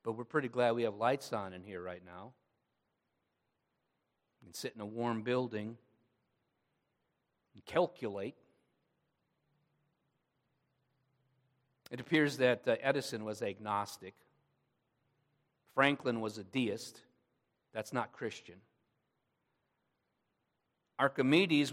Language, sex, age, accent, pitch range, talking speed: English, male, 50-69, American, 120-150 Hz, 95 wpm